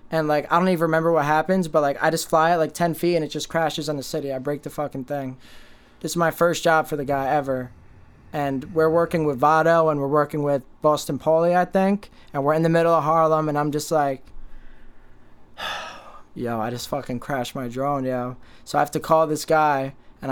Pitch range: 140-165 Hz